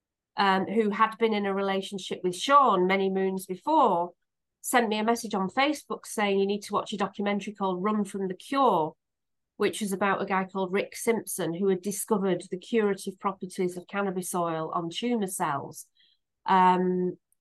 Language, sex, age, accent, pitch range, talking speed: English, female, 40-59, British, 180-210 Hz, 175 wpm